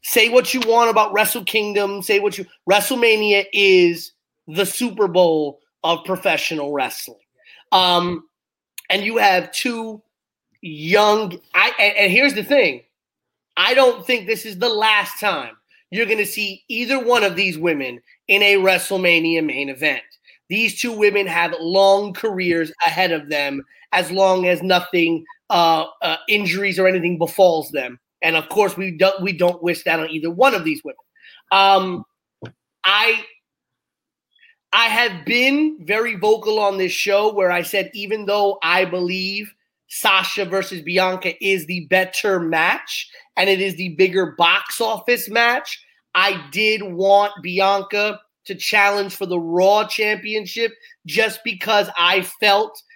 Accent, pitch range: American, 180-220 Hz